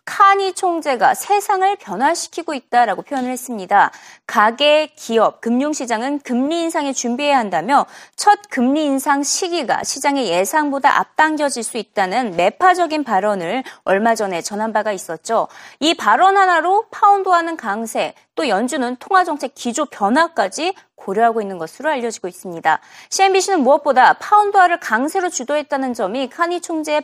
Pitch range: 225-335 Hz